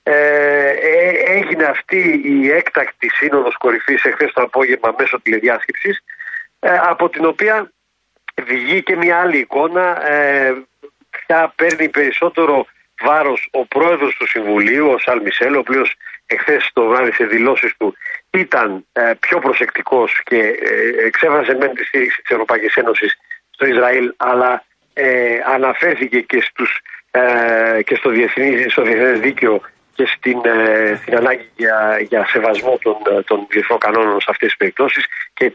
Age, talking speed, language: 50-69, 135 wpm, Greek